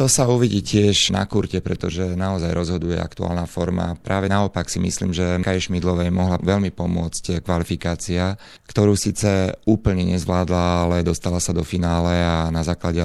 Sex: male